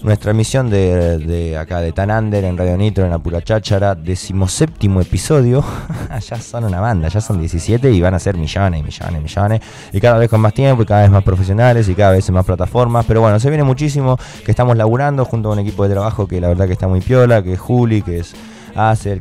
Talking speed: 230 wpm